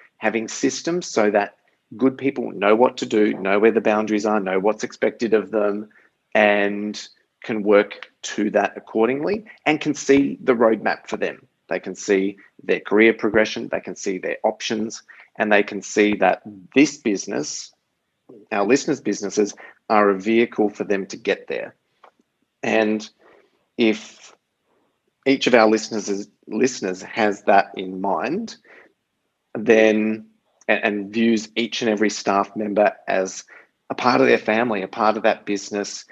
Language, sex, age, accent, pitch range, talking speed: English, male, 30-49, Australian, 100-115 Hz, 155 wpm